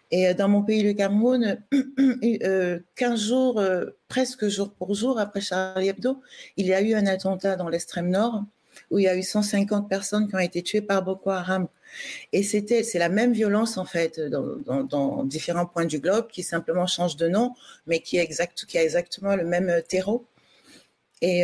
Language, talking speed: French, 200 wpm